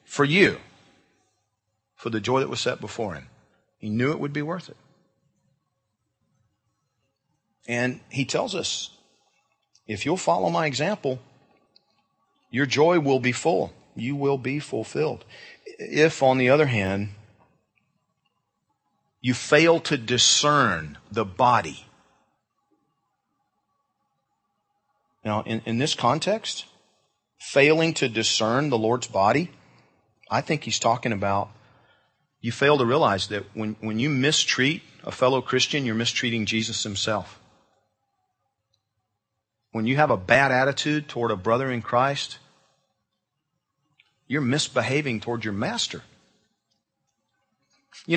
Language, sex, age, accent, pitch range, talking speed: English, male, 40-59, American, 110-145 Hz, 120 wpm